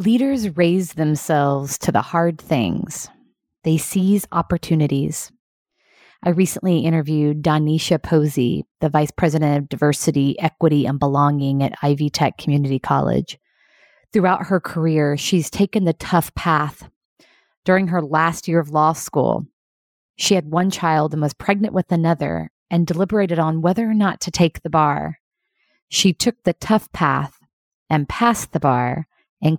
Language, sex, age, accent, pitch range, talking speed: English, female, 30-49, American, 150-185 Hz, 145 wpm